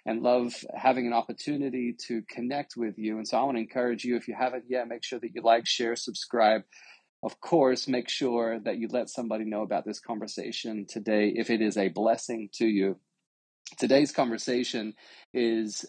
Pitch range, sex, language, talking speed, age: 110-125 Hz, male, English, 185 wpm, 30-49